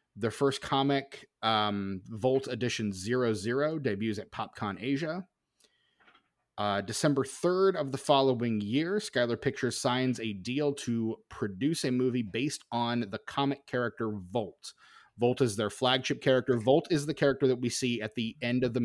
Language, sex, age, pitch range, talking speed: English, male, 30-49, 110-135 Hz, 160 wpm